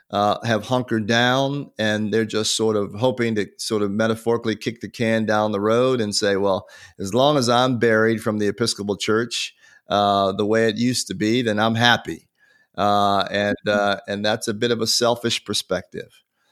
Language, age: English, 40-59